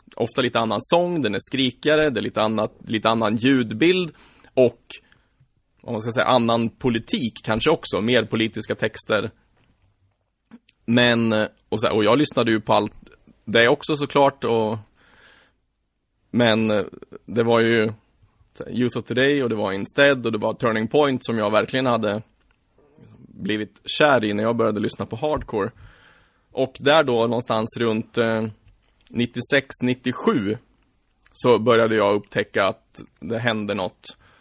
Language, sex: Swedish, male